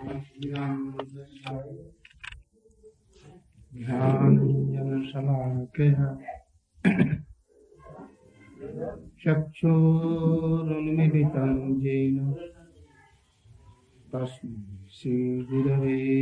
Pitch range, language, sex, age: 125-150 Hz, Hindi, male, 60-79